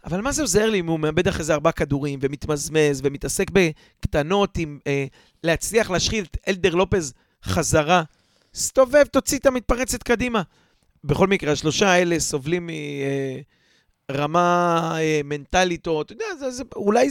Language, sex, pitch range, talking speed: Hebrew, male, 145-200 Hz, 155 wpm